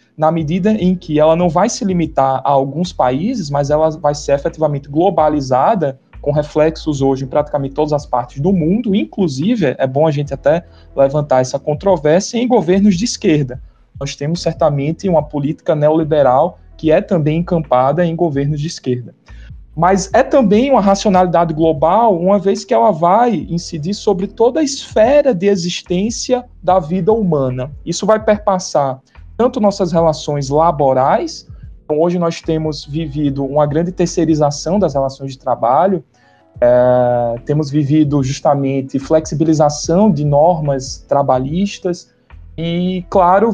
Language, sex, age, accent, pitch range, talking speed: Portuguese, male, 20-39, Brazilian, 145-190 Hz, 140 wpm